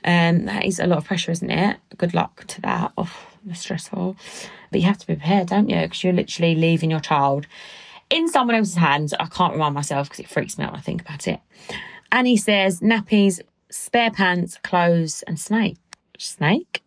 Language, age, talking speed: English, 30-49, 205 wpm